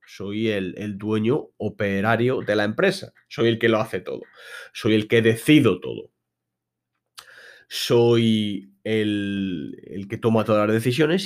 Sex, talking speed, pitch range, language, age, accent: male, 145 wpm, 100-115 Hz, Spanish, 30-49, Spanish